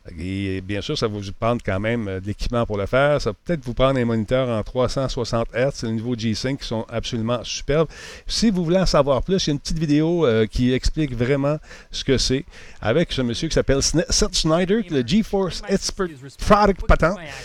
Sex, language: male, French